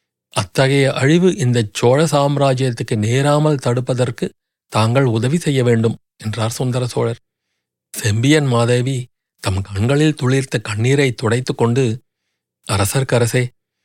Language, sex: Tamil, male